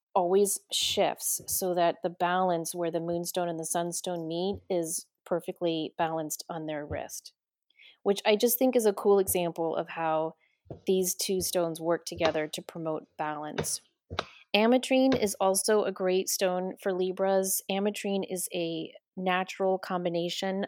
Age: 30-49